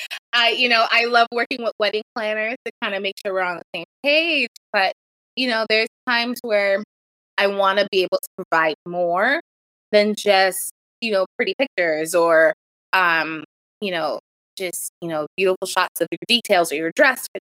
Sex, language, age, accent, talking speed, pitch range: female, English, 20-39, American, 190 wpm, 190-240 Hz